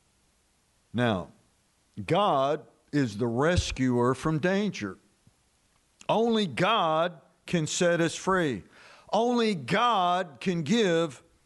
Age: 60-79